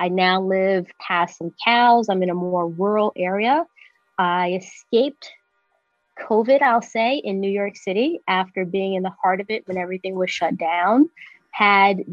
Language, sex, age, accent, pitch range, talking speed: English, female, 30-49, American, 175-215 Hz, 170 wpm